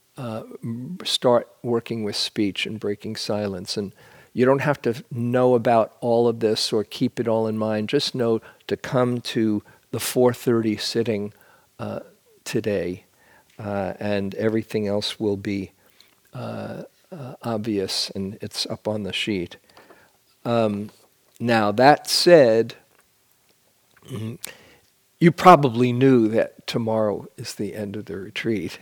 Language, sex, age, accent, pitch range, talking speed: English, male, 50-69, American, 110-135 Hz, 145 wpm